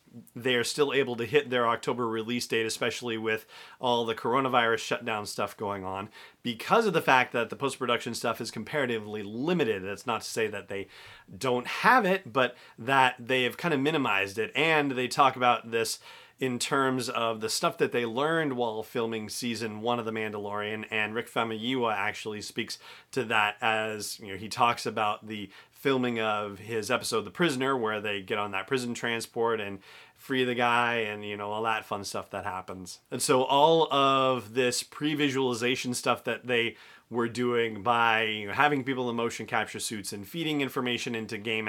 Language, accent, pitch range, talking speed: English, American, 110-135 Hz, 185 wpm